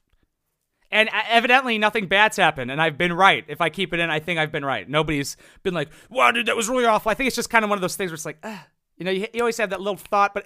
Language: English